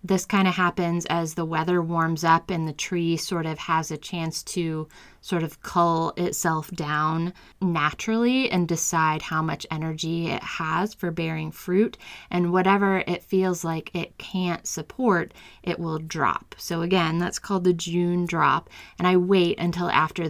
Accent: American